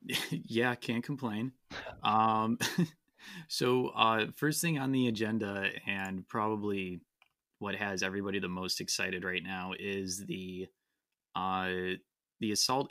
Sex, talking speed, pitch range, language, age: male, 120 wpm, 95-115 Hz, English, 20-39